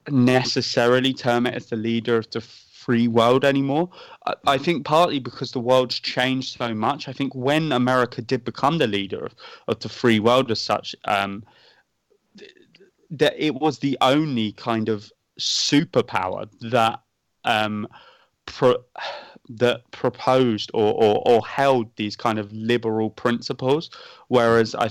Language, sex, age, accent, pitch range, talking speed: English, male, 20-39, British, 110-130 Hz, 150 wpm